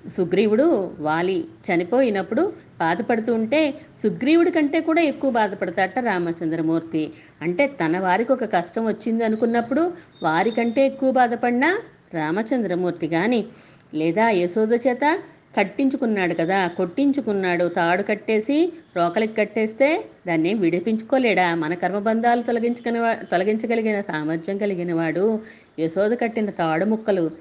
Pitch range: 175-240 Hz